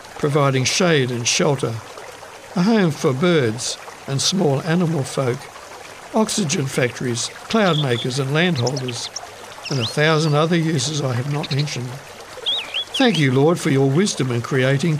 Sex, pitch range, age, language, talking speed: male, 130-160 Hz, 60-79, English, 140 wpm